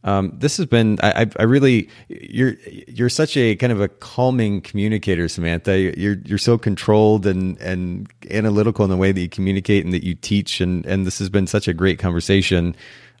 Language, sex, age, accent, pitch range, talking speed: English, male, 30-49, American, 90-110 Hz, 195 wpm